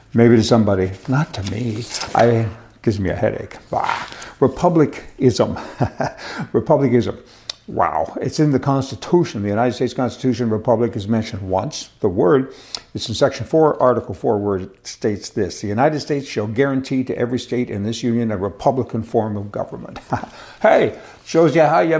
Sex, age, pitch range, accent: male, 60-79, 110-135 Hz, American